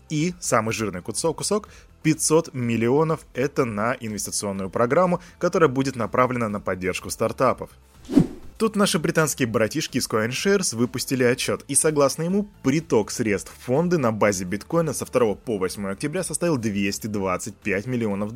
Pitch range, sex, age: 110-165 Hz, male, 20-39